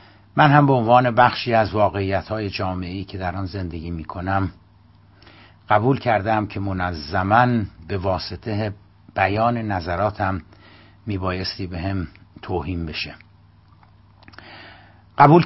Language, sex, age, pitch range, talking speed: Persian, male, 60-79, 95-110 Hz, 115 wpm